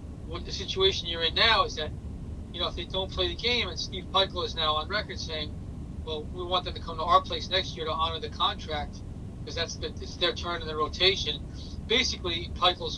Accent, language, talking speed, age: American, English, 230 wpm, 30-49